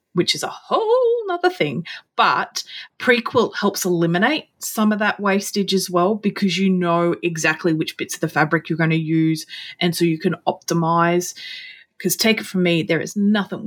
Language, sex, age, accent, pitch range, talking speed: English, female, 20-39, Australian, 165-195 Hz, 185 wpm